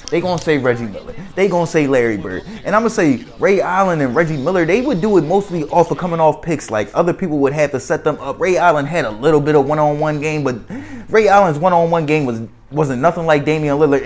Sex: male